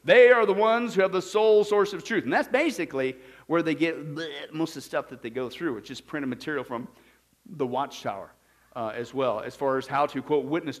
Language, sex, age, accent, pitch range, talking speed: English, male, 50-69, American, 140-220 Hz, 235 wpm